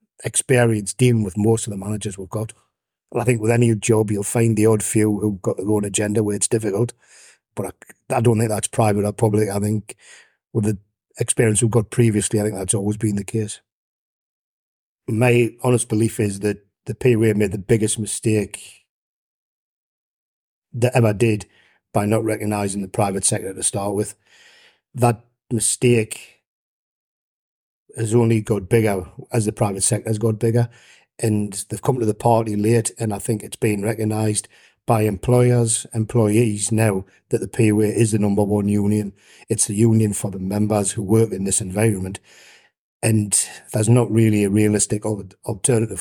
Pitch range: 105-115 Hz